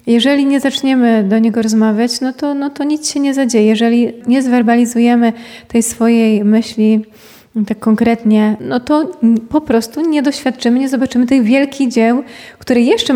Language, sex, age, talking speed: Polish, female, 20-39, 160 wpm